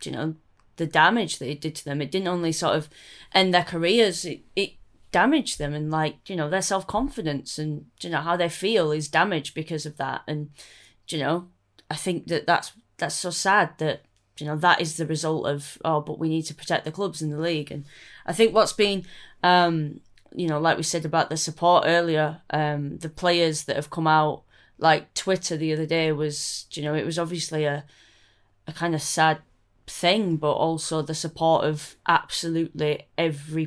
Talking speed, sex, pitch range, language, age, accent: 200 wpm, female, 150-170 Hz, English, 20-39, British